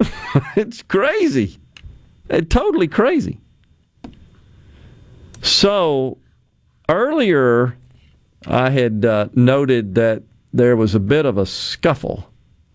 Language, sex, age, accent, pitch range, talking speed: English, male, 50-69, American, 105-135 Hz, 85 wpm